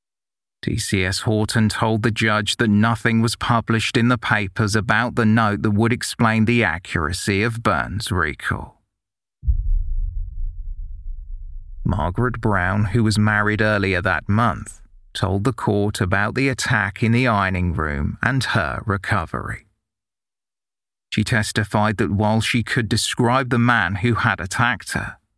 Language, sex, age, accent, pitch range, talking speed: English, male, 40-59, British, 90-120 Hz, 135 wpm